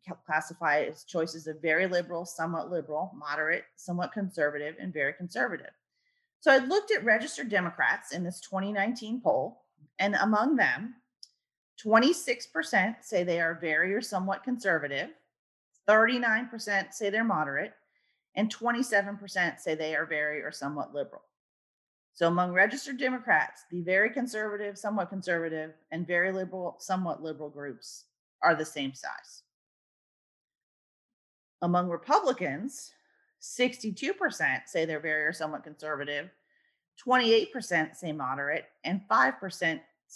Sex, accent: female, American